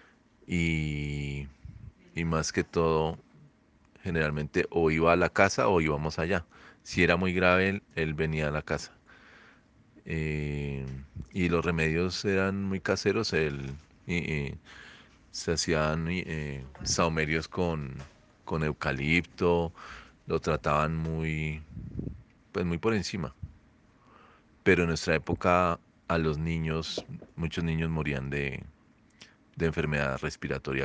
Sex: male